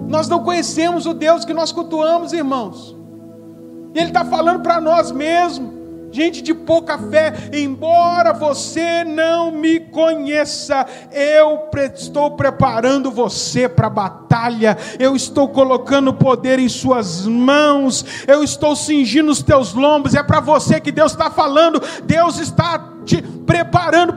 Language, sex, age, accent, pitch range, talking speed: Portuguese, male, 50-69, Brazilian, 280-340 Hz, 140 wpm